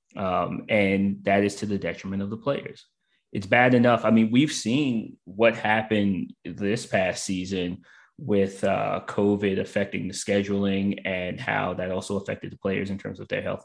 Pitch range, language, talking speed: 95-105 Hz, English, 175 wpm